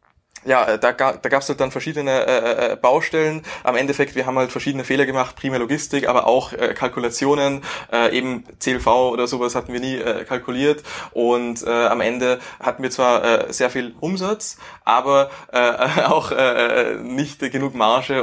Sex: male